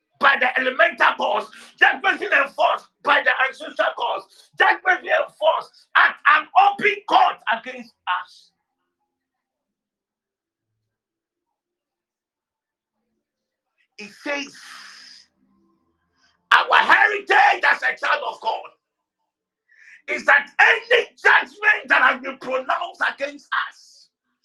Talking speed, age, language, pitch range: 90 wpm, 50-69, English, 260-415 Hz